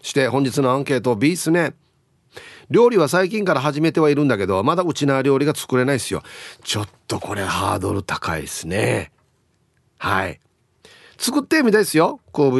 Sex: male